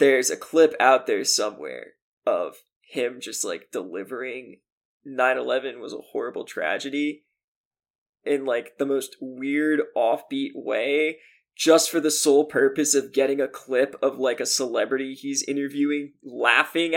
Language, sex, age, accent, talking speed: English, male, 20-39, American, 140 wpm